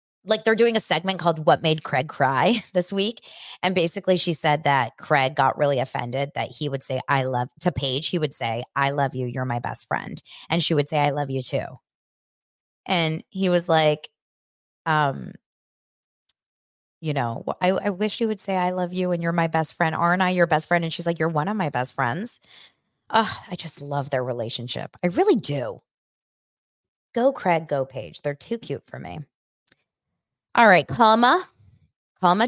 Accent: American